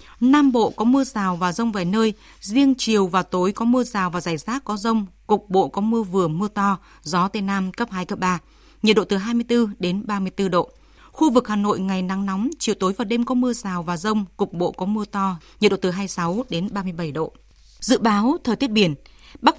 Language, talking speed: Vietnamese, 235 wpm